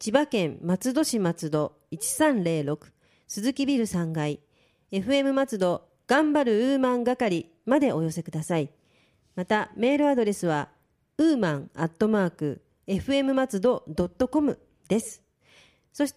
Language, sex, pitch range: Japanese, female, 180-260 Hz